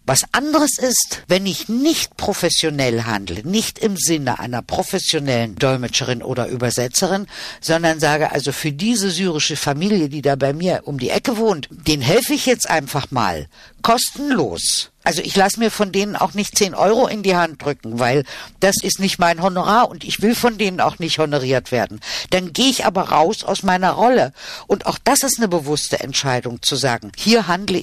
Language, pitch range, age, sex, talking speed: German, 145-205 Hz, 60-79, female, 185 wpm